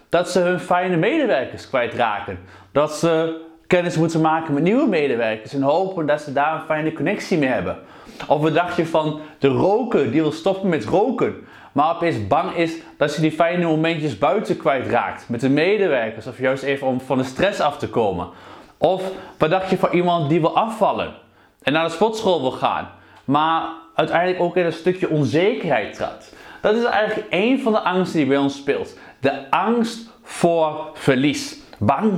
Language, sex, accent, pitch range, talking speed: Dutch, male, Dutch, 145-190 Hz, 185 wpm